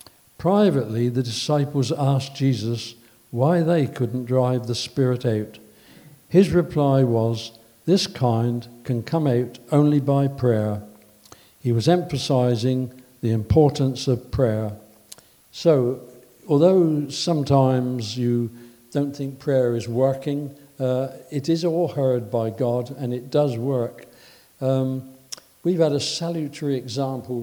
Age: 60-79